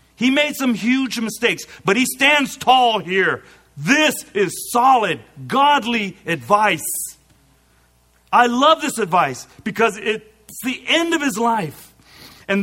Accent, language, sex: American, English, male